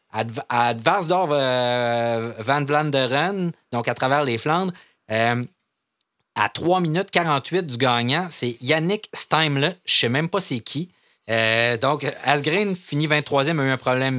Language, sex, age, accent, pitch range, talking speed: French, male, 40-59, Canadian, 110-145 Hz, 155 wpm